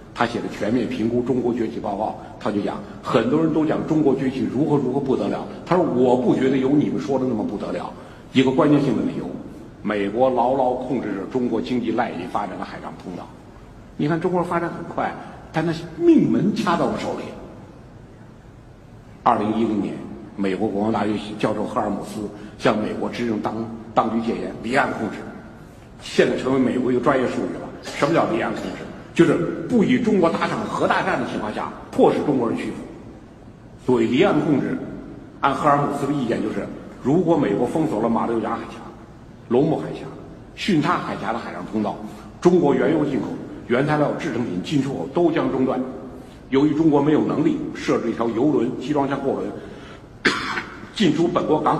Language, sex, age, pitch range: Chinese, male, 60-79, 115-150 Hz